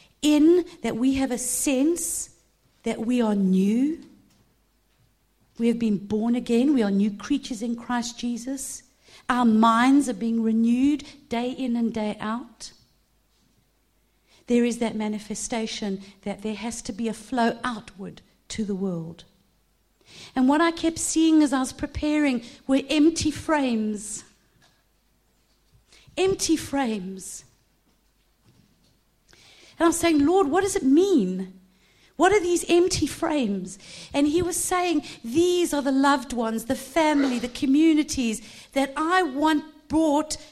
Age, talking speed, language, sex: 50-69, 135 wpm, English, female